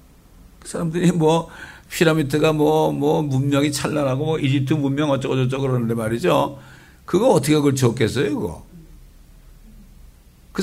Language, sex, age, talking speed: English, male, 60-79, 100 wpm